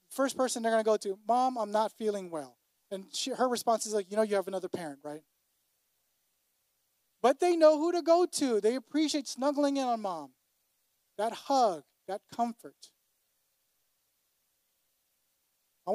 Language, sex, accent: English, male, American